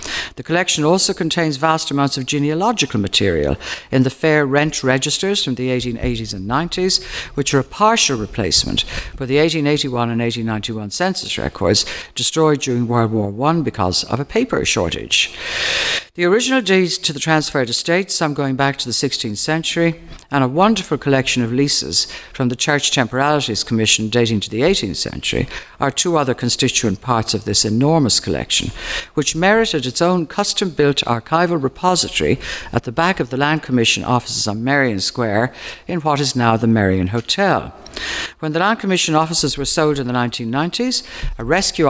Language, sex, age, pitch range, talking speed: English, female, 60-79, 115-160 Hz, 170 wpm